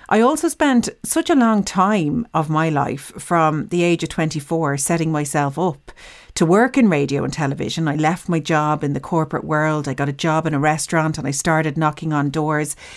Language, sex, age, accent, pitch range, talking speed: English, female, 40-59, Irish, 150-200 Hz, 210 wpm